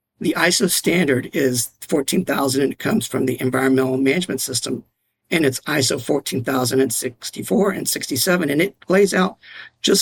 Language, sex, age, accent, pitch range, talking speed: English, male, 50-69, American, 130-160 Hz, 145 wpm